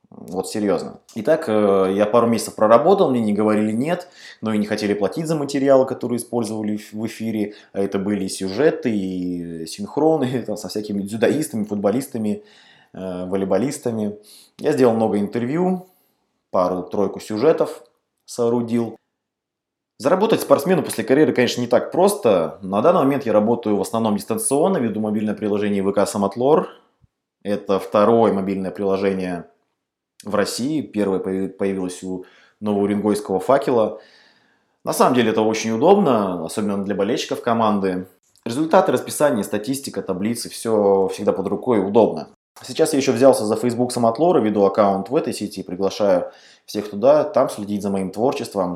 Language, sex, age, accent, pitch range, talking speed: Russian, male, 20-39, native, 100-120 Hz, 140 wpm